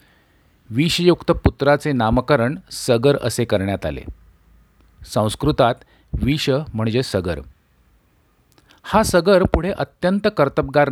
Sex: male